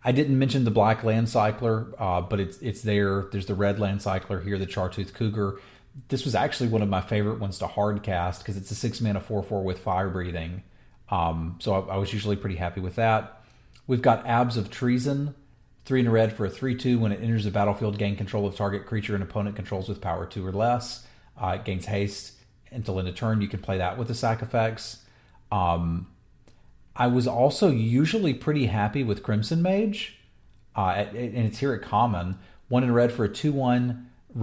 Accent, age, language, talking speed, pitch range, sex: American, 40-59, English, 205 wpm, 100-120 Hz, male